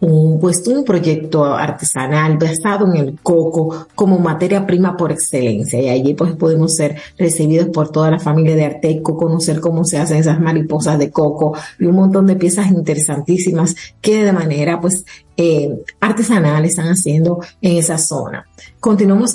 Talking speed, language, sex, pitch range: 160 wpm, Spanish, female, 155-185 Hz